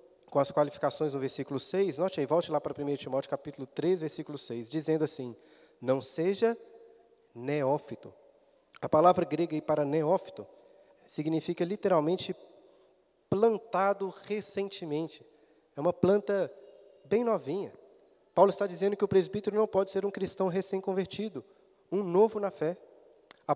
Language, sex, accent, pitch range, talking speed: Portuguese, male, Brazilian, 160-220 Hz, 135 wpm